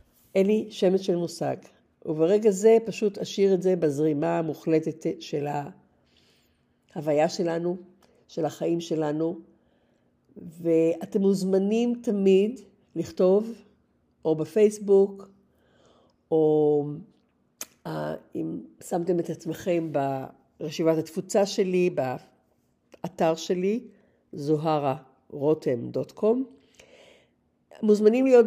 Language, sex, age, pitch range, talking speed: Hebrew, female, 60-79, 160-200 Hz, 80 wpm